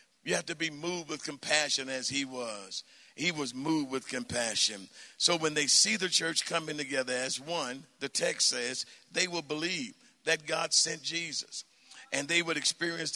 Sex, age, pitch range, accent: male, 50-69, 140-170 Hz, American